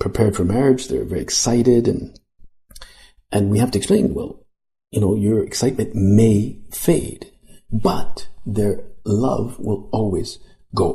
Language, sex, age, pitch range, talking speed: English, male, 50-69, 100-120 Hz, 135 wpm